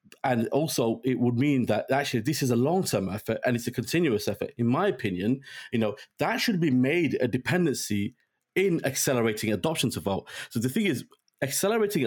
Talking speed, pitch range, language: 190 wpm, 115-145 Hz, English